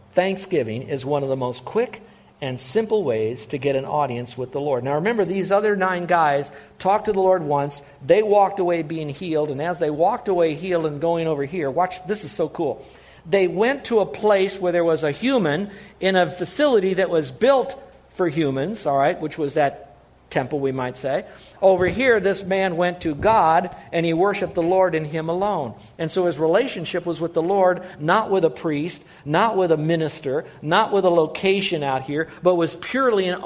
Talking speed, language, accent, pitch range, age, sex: 210 wpm, English, American, 135-185 Hz, 50-69, male